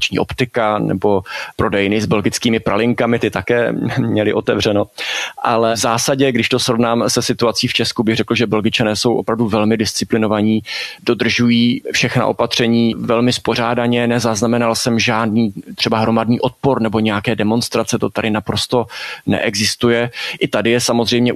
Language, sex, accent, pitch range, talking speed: Czech, male, native, 115-125 Hz, 140 wpm